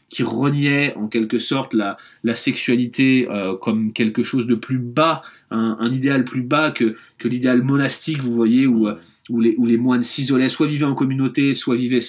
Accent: French